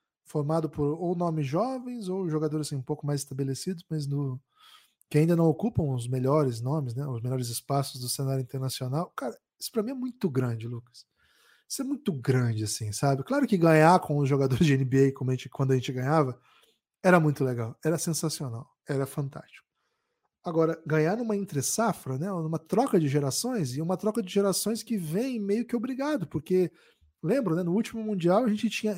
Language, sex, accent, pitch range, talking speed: Portuguese, male, Brazilian, 140-210 Hz, 190 wpm